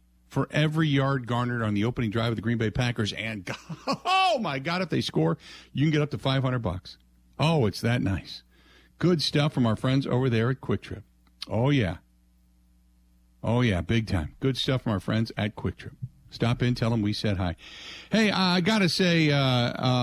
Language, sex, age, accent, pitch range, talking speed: English, male, 50-69, American, 105-135 Hz, 205 wpm